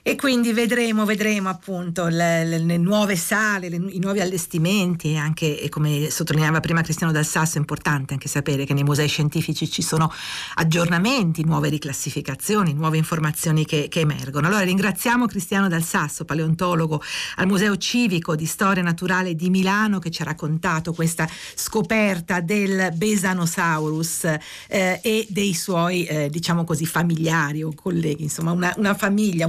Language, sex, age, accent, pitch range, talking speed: Italian, female, 50-69, native, 155-185 Hz, 155 wpm